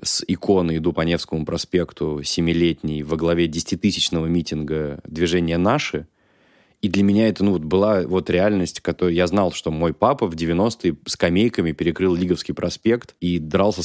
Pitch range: 85-110 Hz